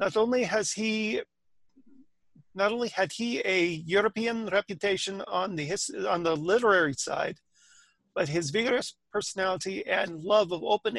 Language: English